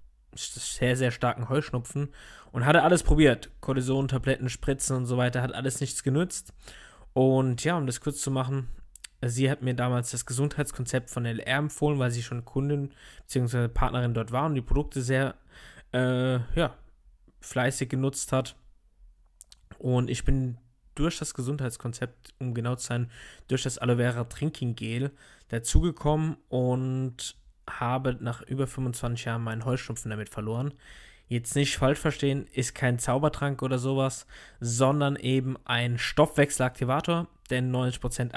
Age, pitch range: 20-39, 120-135 Hz